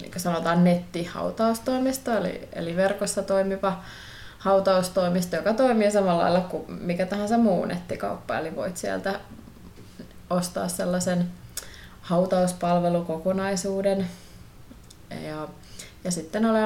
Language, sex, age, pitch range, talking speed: Finnish, female, 20-39, 175-205 Hz, 90 wpm